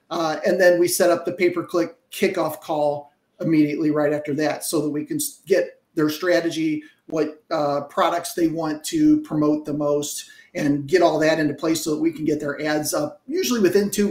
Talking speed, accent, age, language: 200 wpm, American, 40-59, English